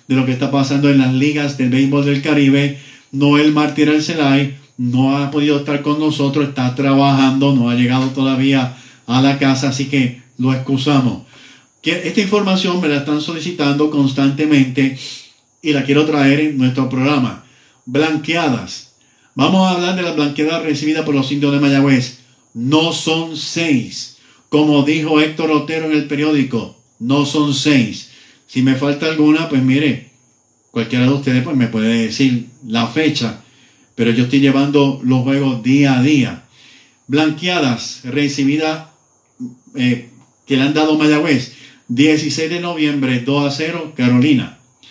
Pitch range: 130-155 Hz